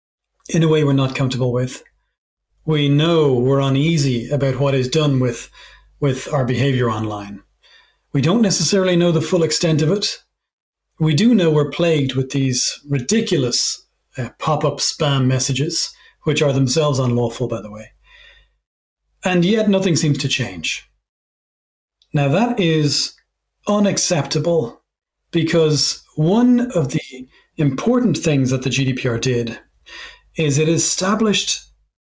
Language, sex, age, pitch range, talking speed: English, male, 40-59, 135-190 Hz, 135 wpm